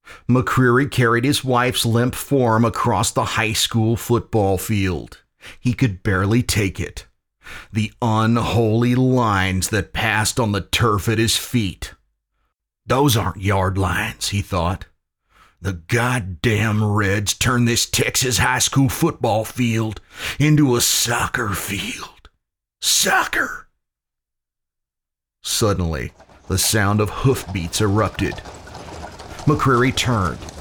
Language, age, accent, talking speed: English, 40-59, American, 110 wpm